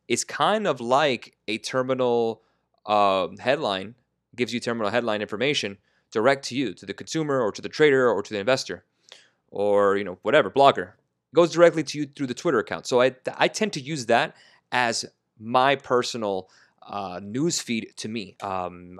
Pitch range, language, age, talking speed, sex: 110-135 Hz, English, 30-49, 180 wpm, male